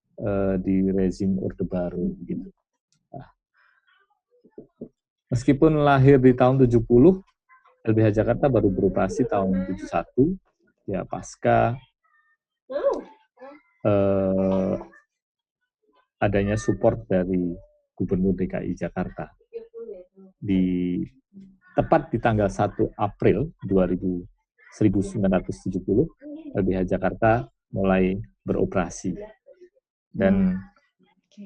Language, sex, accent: Indonesian, male, native